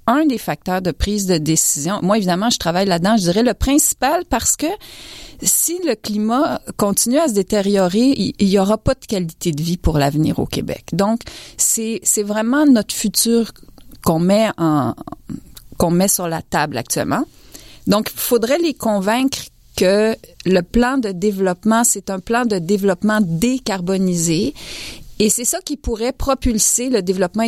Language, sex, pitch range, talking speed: French, female, 185-235 Hz, 165 wpm